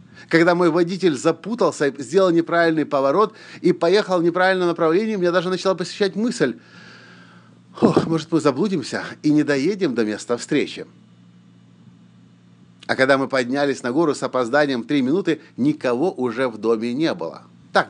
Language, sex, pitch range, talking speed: Russian, male, 100-160 Hz, 145 wpm